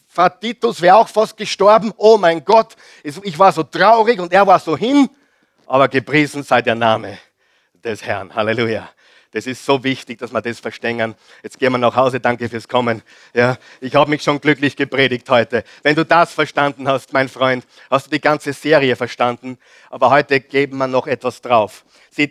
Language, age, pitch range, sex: German, 50-69, 135-205 Hz, male